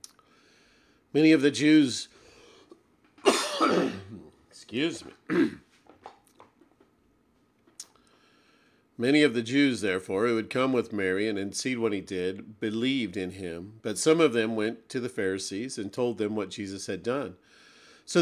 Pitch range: 110-135 Hz